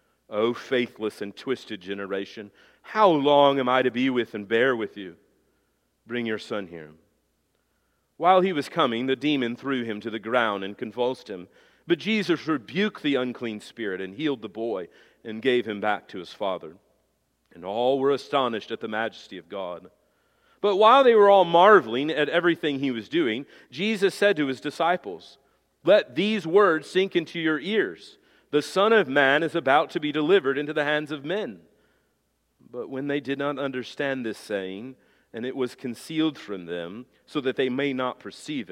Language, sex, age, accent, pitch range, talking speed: English, male, 40-59, American, 115-160 Hz, 180 wpm